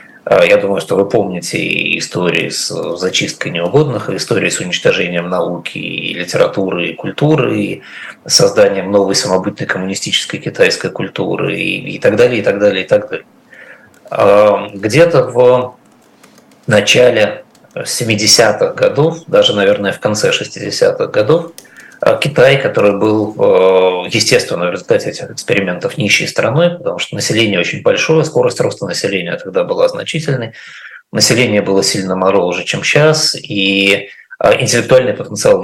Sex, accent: male, native